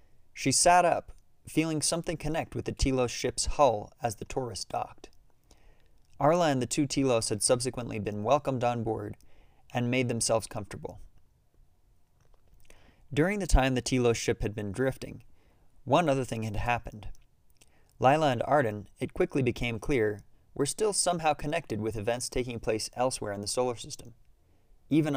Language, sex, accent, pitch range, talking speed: English, male, American, 110-135 Hz, 155 wpm